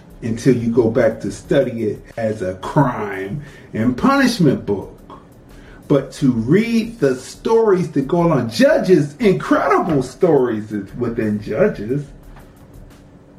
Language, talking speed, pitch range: English, 115 wpm, 125-185 Hz